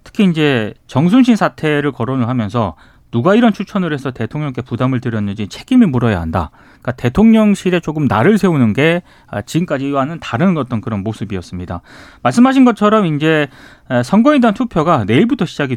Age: 30-49